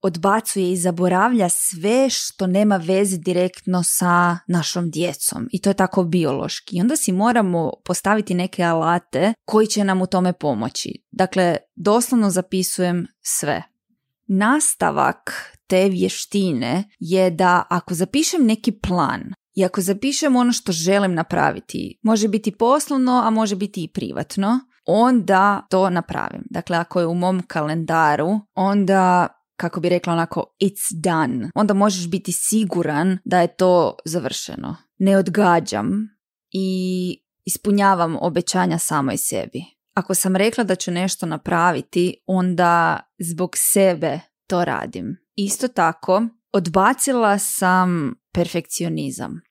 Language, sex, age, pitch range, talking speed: Croatian, female, 20-39, 175-210 Hz, 125 wpm